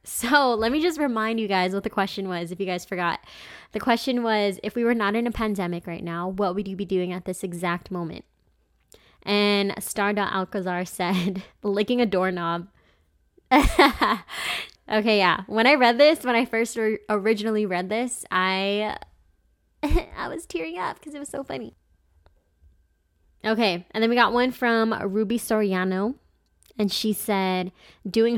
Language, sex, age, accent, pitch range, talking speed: English, female, 20-39, American, 175-220 Hz, 165 wpm